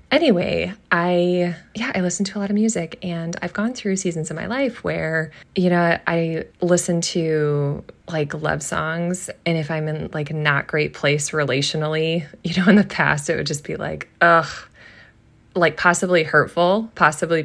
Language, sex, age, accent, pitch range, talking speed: English, female, 20-39, American, 145-175 Hz, 175 wpm